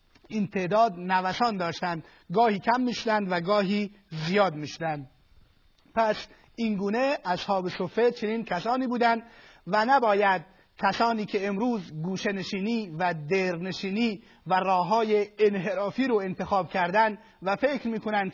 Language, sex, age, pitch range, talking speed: Persian, male, 30-49, 185-225 Hz, 120 wpm